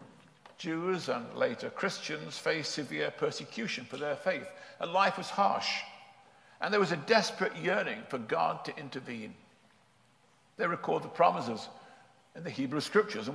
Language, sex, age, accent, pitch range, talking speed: English, male, 50-69, British, 145-205 Hz, 150 wpm